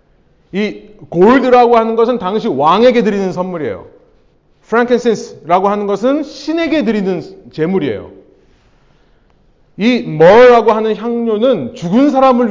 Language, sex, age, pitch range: Korean, male, 30-49, 185-275 Hz